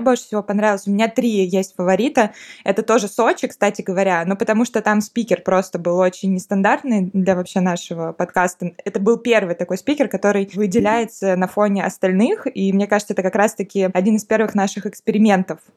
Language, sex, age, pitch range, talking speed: Russian, female, 20-39, 175-210 Hz, 180 wpm